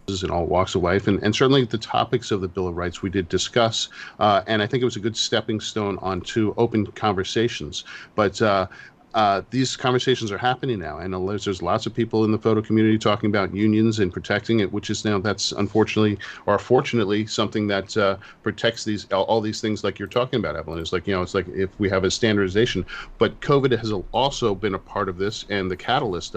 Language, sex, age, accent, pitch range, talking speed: English, male, 40-59, American, 95-115 Hz, 230 wpm